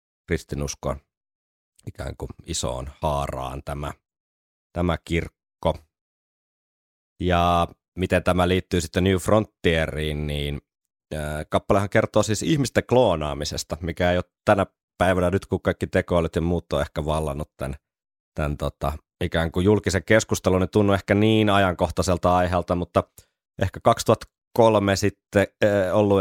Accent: native